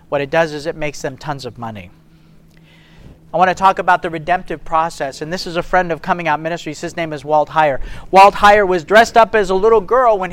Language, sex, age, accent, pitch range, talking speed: English, male, 40-59, American, 155-190 Hz, 245 wpm